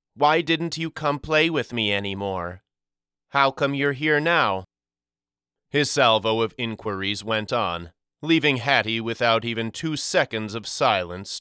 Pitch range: 100-130 Hz